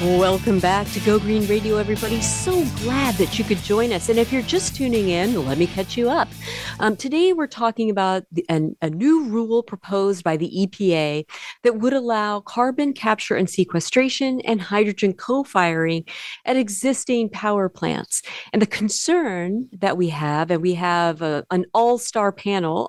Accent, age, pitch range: American, 40-59, 180-230 Hz